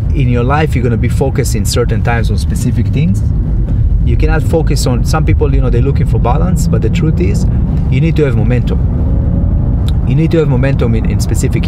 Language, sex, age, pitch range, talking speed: English, male, 30-49, 85-130 Hz, 220 wpm